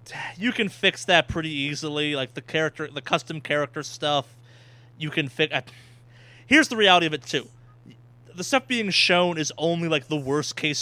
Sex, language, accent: male, English, American